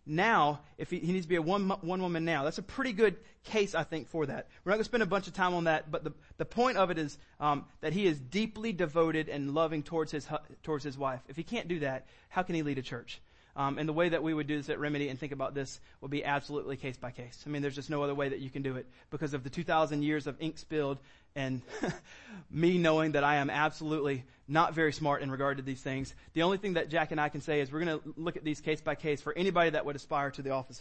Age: 30-49